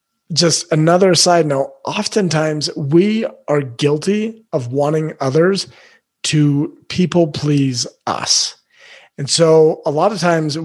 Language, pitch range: English, 135-170 Hz